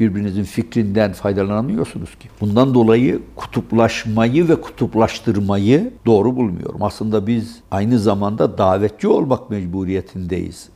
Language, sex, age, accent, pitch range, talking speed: Turkish, male, 60-79, native, 100-130 Hz, 100 wpm